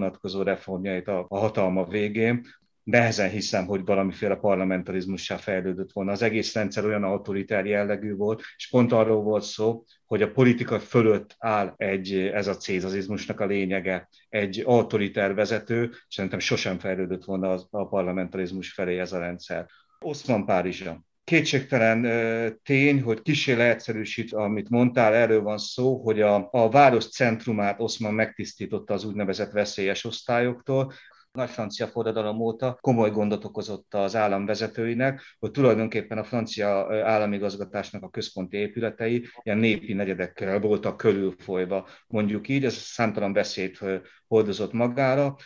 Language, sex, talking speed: Hungarian, male, 135 wpm